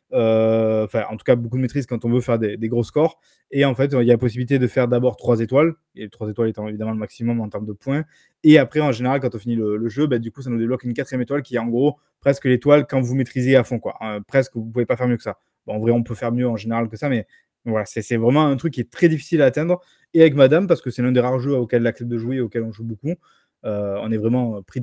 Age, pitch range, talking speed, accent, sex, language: 20-39, 115-135 Hz, 310 wpm, French, male, French